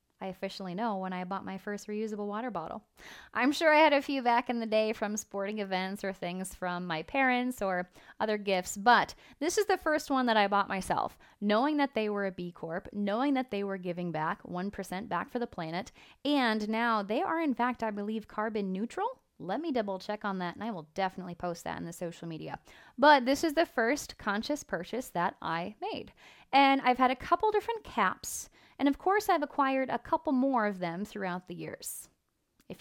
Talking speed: 215 wpm